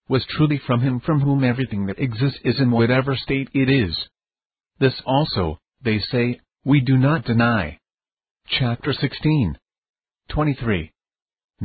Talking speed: 135 wpm